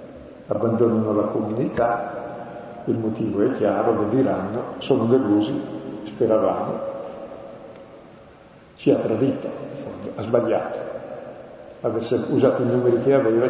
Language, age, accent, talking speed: Italian, 50-69, native, 100 wpm